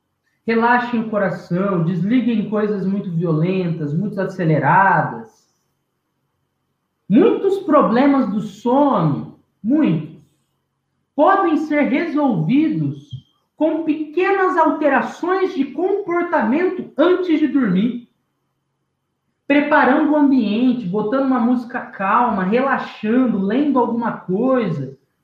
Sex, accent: male, Brazilian